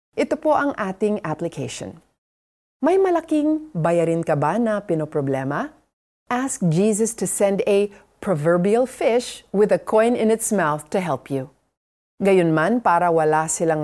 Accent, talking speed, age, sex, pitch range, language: native, 145 wpm, 40-59, female, 160-240 Hz, Filipino